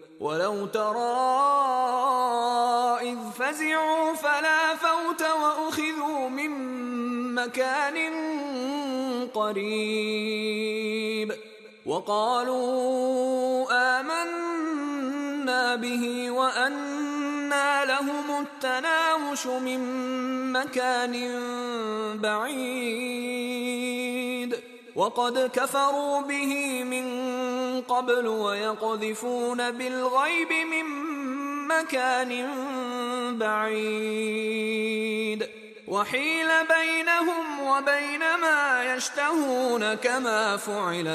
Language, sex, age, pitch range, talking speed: Indonesian, male, 20-39, 215-275 Hz, 50 wpm